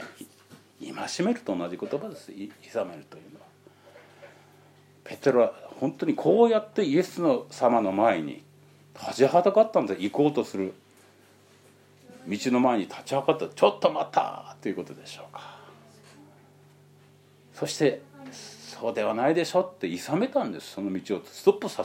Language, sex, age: Japanese, male, 50-69